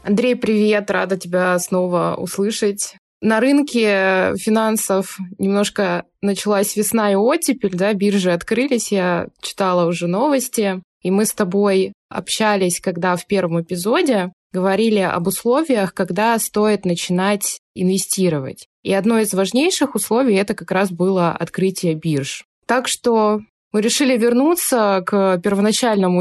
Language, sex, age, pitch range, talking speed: Russian, female, 20-39, 180-215 Hz, 125 wpm